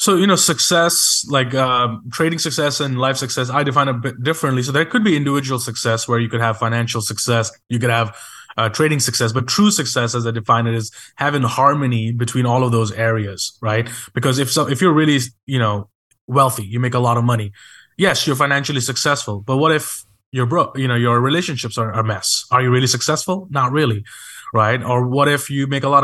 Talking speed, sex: 220 wpm, male